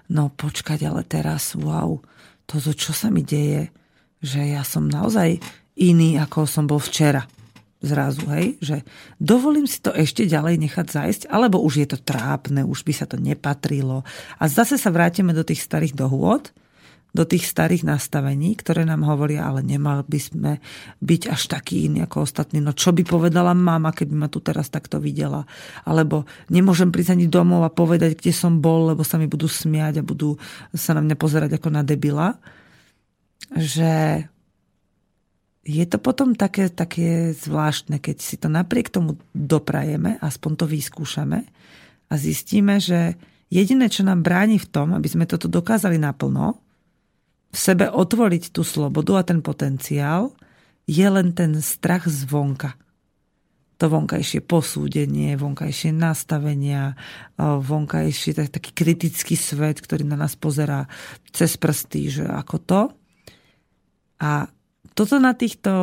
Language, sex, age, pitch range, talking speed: Slovak, female, 40-59, 145-175 Hz, 150 wpm